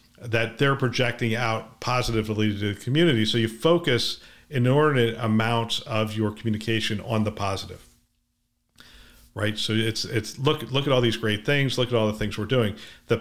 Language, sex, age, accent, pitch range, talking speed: English, male, 50-69, American, 105-130 Hz, 175 wpm